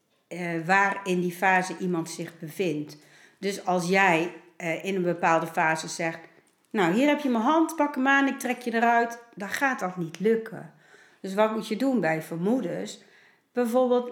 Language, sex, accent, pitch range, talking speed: English, female, Dutch, 175-245 Hz, 175 wpm